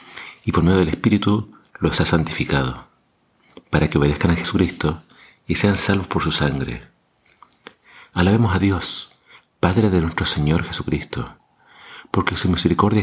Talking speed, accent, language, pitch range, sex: 140 wpm, Argentinian, Spanish, 80-95 Hz, male